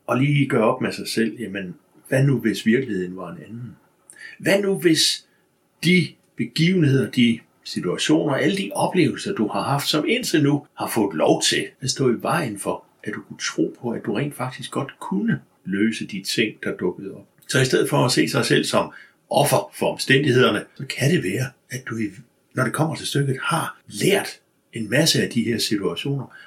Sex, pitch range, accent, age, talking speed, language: male, 115-150 Hz, native, 60-79, 195 wpm, Danish